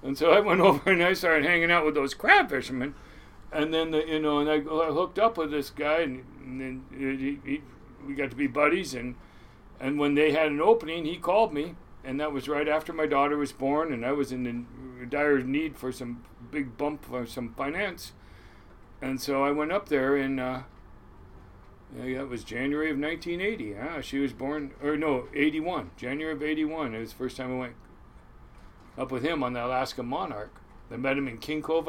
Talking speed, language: 215 wpm, English